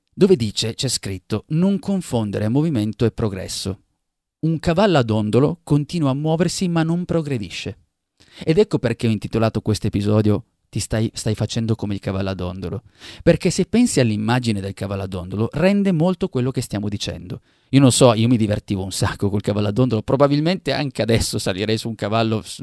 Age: 30-49